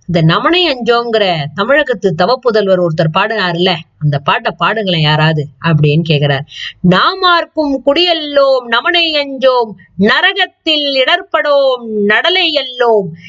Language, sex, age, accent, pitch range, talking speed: Tamil, female, 20-39, native, 195-315 Hz, 100 wpm